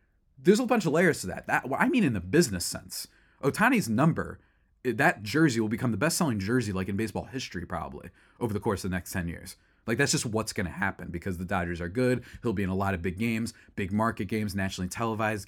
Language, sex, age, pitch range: English, male, 30-49, 95-130 Hz